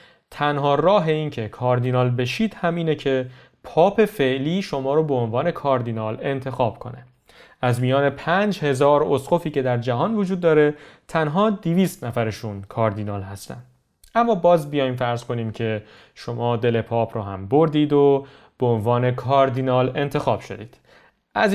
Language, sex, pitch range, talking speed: Persian, male, 115-150 Hz, 140 wpm